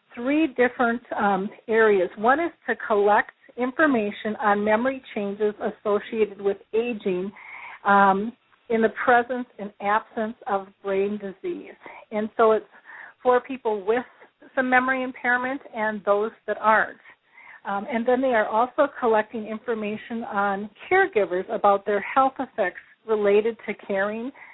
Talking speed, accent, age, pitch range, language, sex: 130 wpm, American, 40-59, 200-245 Hz, English, female